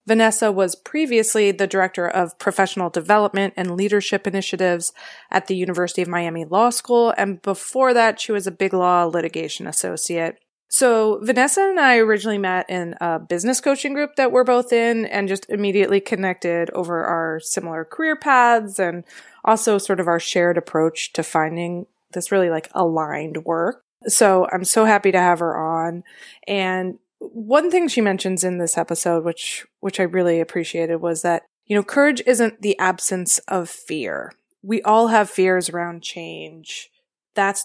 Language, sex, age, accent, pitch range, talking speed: English, female, 20-39, American, 175-230 Hz, 165 wpm